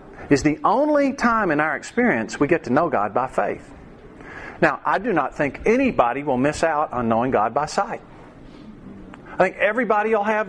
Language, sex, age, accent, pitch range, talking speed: English, male, 50-69, American, 165-240 Hz, 190 wpm